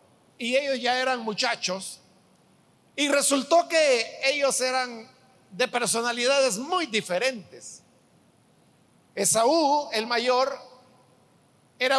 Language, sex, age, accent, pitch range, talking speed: Spanish, male, 50-69, Mexican, 220-275 Hz, 90 wpm